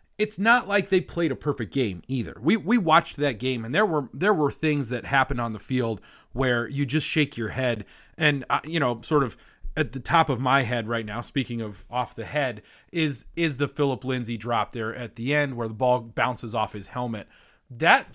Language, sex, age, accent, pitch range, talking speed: English, male, 30-49, American, 115-150 Hz, 220 wpm